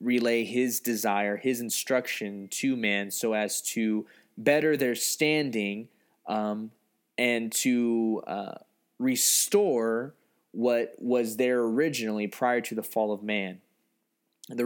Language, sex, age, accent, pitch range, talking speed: English, male, 20-39, American, 110-135 Hz, 120 wpm